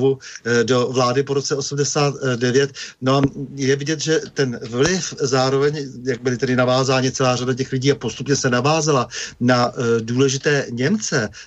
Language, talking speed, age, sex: Slovak, 140 wpm, 50-69, male